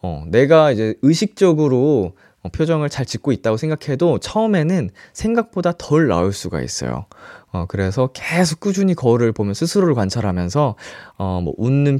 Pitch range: 100-155 Hz